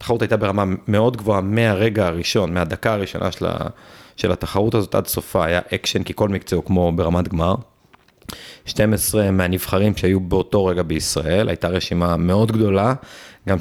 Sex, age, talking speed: male, 30-49, 150 wpm